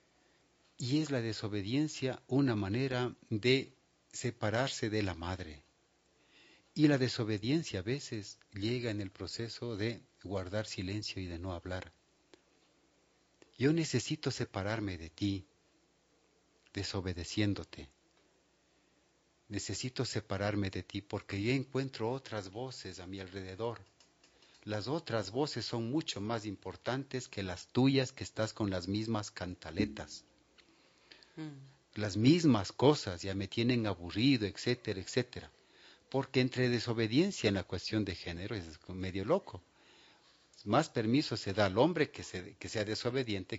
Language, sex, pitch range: Spanish, male, 95-120 Hz